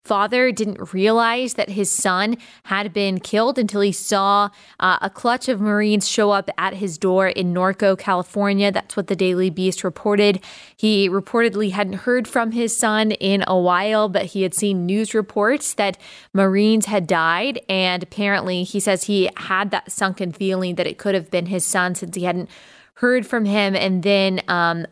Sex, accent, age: female, American, 20-39